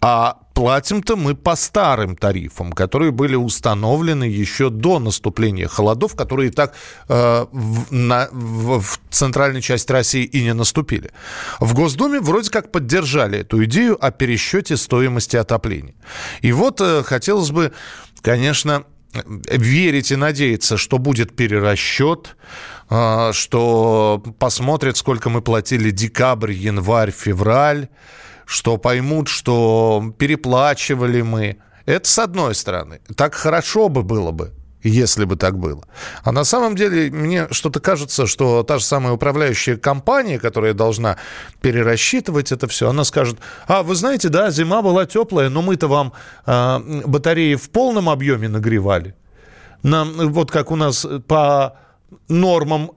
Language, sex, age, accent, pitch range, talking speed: Russian, male, 20-39, native, 115-160 Hz, 135 wpm